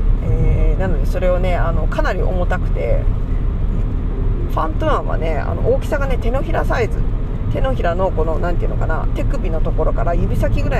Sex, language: female, Japanese